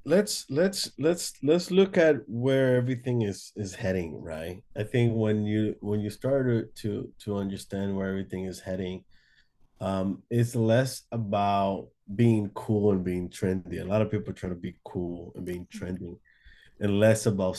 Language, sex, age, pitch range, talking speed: English, male, 20-39, 95-120 Hz, 170 wpm